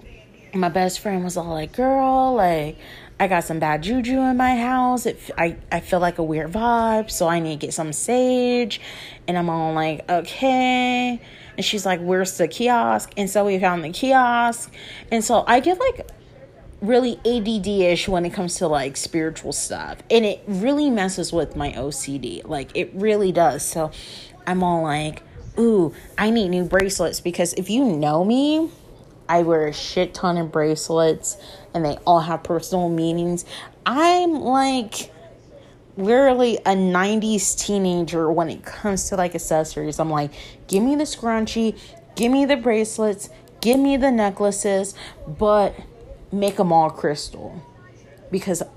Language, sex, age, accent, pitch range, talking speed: English, female, 30-49, American, 160-225 Hz, 160 wpm